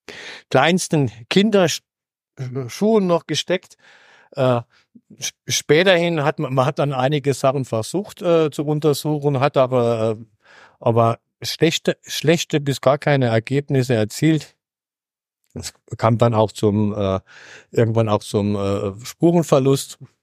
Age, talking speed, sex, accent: 50-69, 115 wpm, male, German